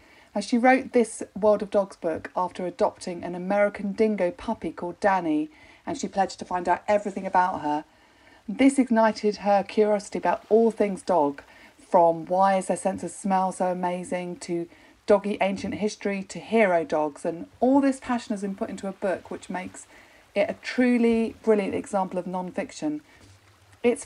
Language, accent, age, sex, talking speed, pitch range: English, British, 40-59, female, 170 wpm, 175-230 Hz